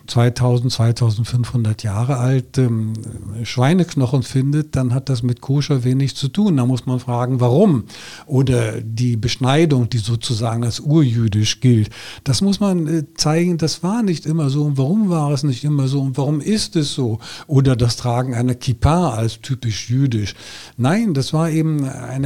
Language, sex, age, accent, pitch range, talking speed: German, male, 50-69, German, 115-145 Hz, 170 wpm